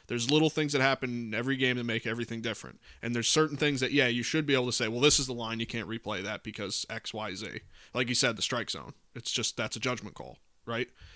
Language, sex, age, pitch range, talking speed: English, male, 20-39, 115-135 Hz, 270 wpm